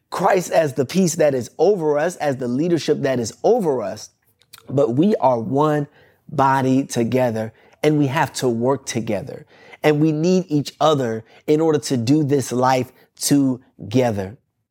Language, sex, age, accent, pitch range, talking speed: English, male, 30-49, American, 135-175 Hz, 160 wpm